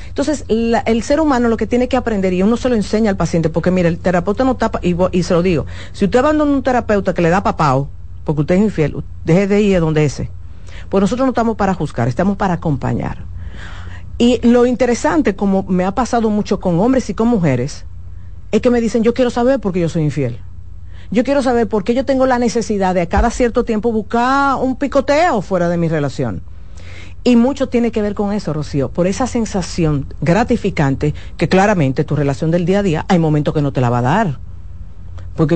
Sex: female